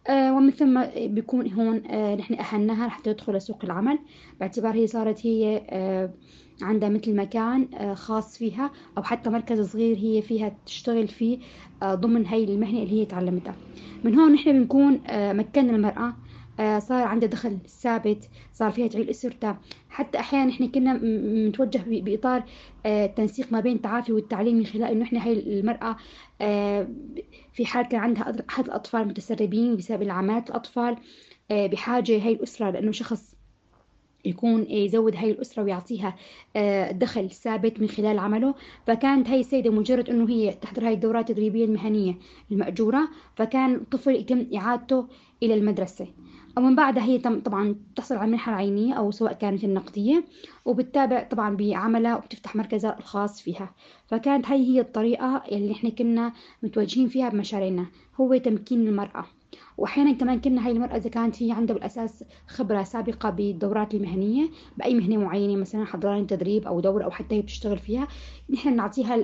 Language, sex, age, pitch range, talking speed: Arabic, female, 20-39, 210-245 Hz, 145 wpm